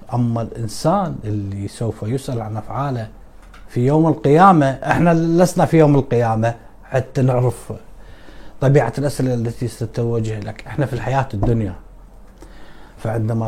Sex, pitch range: male, 110-140 Hz